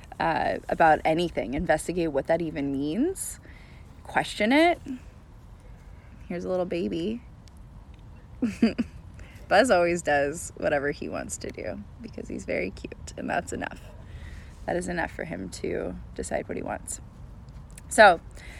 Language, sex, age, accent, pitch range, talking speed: English, female, 20-39, American, 175-220 Hz, 130 wpm